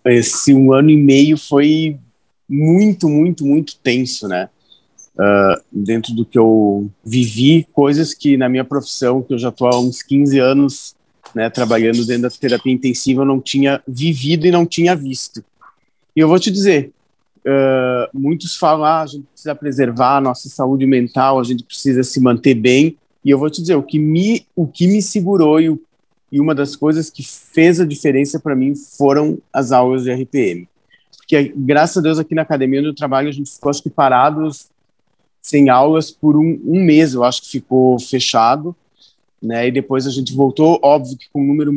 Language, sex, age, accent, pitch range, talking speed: Portuguese, male, 40-59, Brazilian, 130-155 Hz, 190 wpm